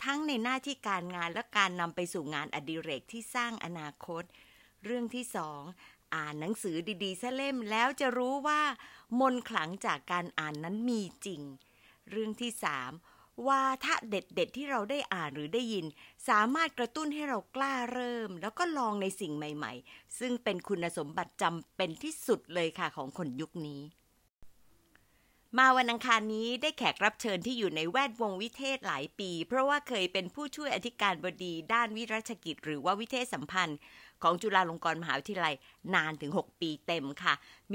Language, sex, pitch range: Thai, female, 170-255 Hz